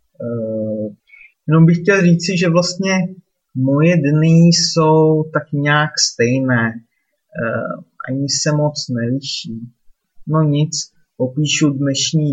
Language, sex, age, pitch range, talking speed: Czech, male, 30-49, 125-155 Hz, 105 wpm